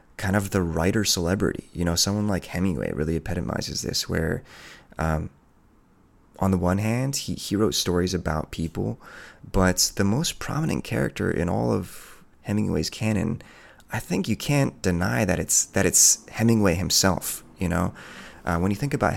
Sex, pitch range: male, 80-105 Hz